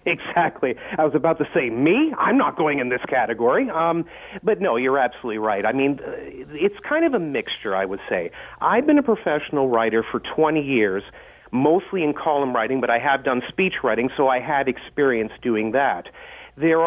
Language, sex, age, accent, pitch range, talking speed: English, male, 40-59, American, 130-170 Hz, 190 wpm